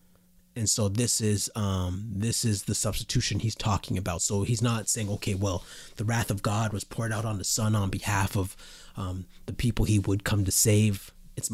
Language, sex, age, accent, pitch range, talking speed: English, male, 30-49, American, 95-115 Hz, 210 wpm